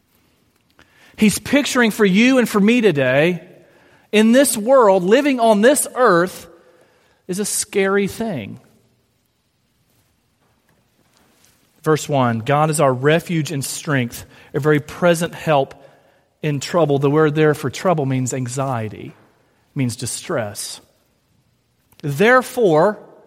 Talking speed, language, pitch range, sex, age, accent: 110 wpm, English, 125-205 Hz, male, 40-59, American